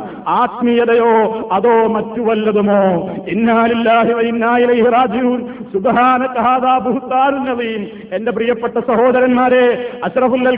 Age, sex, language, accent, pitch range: 50-69, male, Malayalam, native, 225-255 Hz